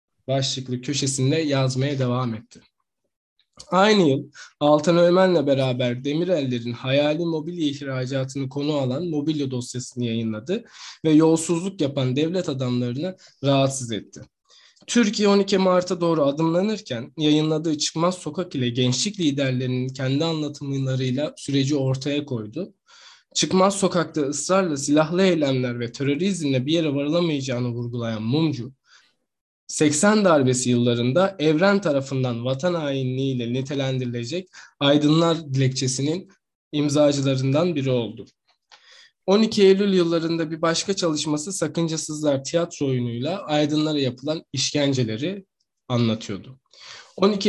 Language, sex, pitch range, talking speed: Turkish, male, 130-170 Hz, 100 wpm